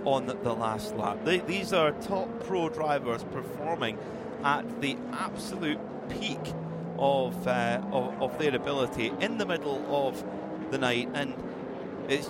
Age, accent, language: 30-49, British, English